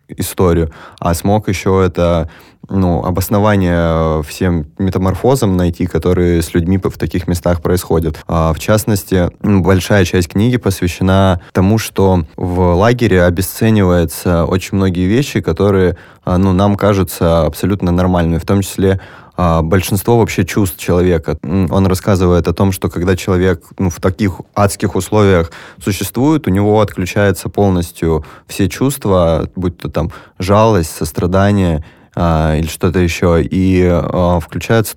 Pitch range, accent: 90-105 Hz, native